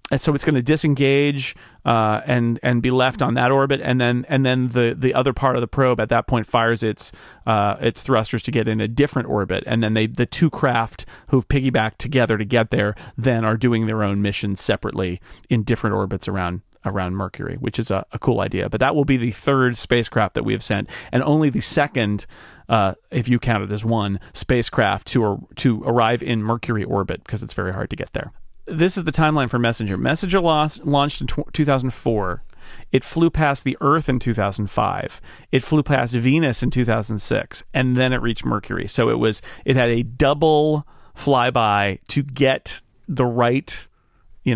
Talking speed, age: 200 wpm, 30-49